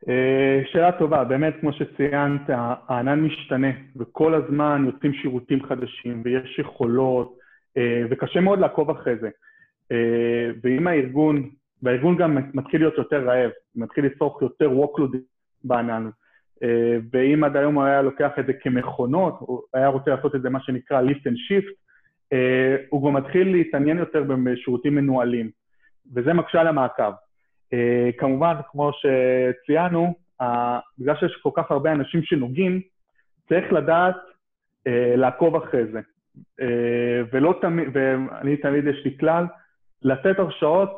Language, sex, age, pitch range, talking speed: Hebrew, male, 30-49, 125-160 Hz, 135 wpm